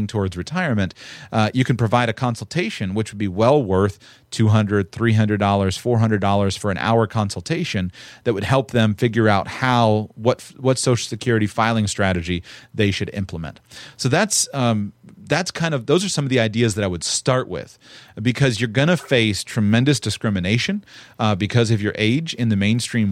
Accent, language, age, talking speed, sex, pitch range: American, English, 30-49, 180 wpm, male, 105-130 Hz